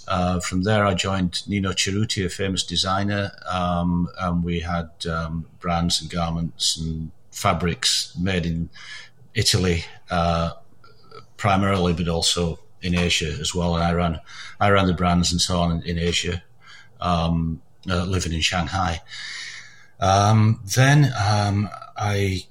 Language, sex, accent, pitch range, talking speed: English, male, British, 90-105 Hz, 140 wpm